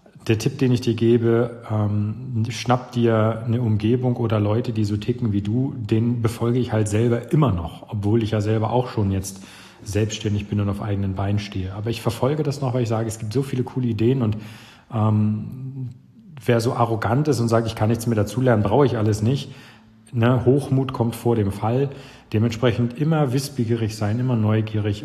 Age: 40-59